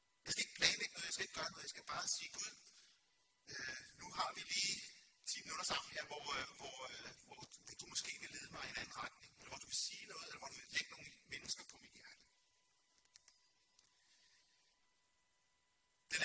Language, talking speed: Danish, 170 wpm